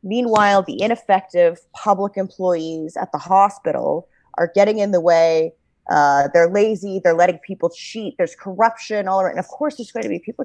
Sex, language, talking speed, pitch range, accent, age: female, English, 180 wpm, 165-205 Hz, American, 30-49